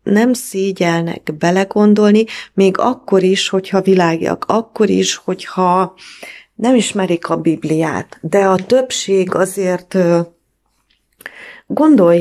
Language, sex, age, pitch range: English, female, 30-49, 170-200 Hz